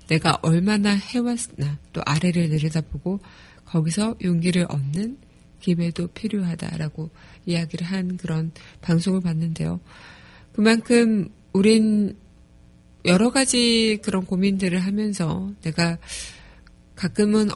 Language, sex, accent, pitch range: Korean, female, native, 170-210 Hz